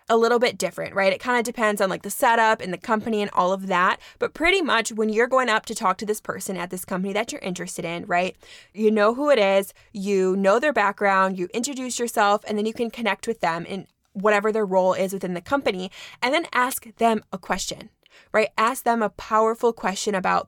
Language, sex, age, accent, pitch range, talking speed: English, female, 20-39, American, 195-240 Hz, 235 wpm